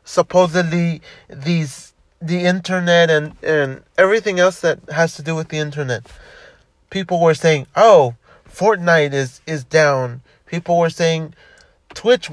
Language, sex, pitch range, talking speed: English, male, 145-180 Hz, 130 wpm